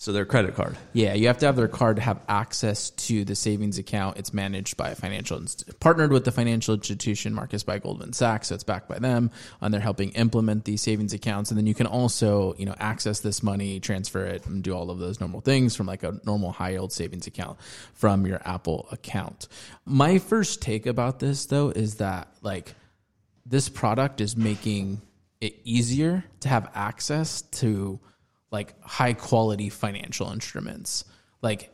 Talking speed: 190 wpm